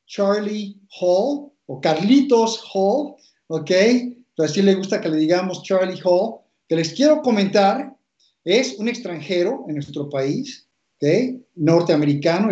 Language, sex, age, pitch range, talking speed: Spanish, male, 50-69, 160-215 Hz, 135 wpm